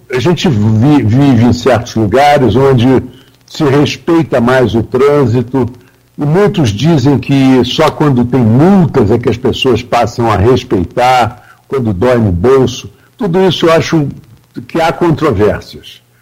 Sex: male